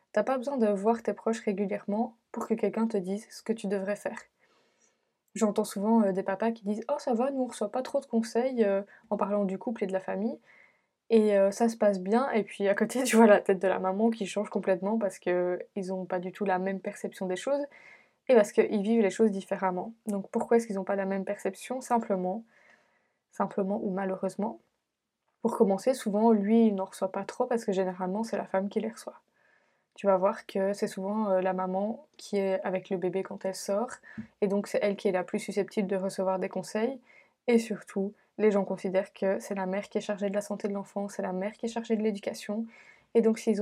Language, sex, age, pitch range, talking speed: French, female, 20-39, 195-225 Hz, 230 wpm